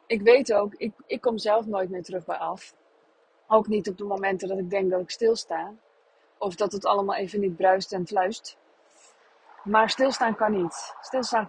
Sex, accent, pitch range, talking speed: female, Dutch, 195-235 Hz, 195 wpm